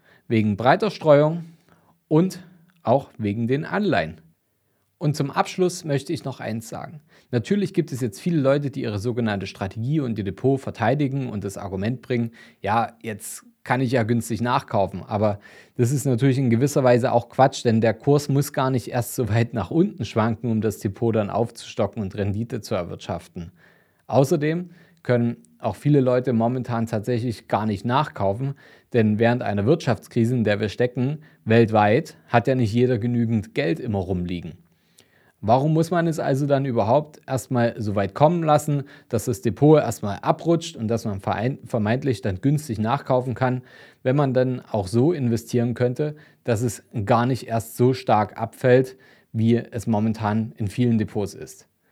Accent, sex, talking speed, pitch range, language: German, male, 170 wpm, 110-140 Hz, German